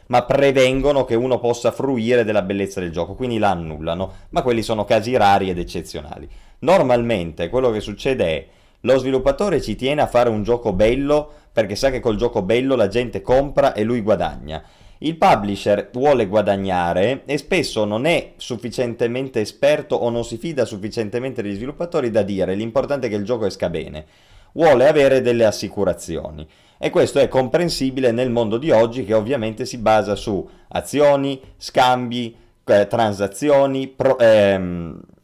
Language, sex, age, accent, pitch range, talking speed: Italian, male, 30-49, native, 100-130 Hz, 155 wpm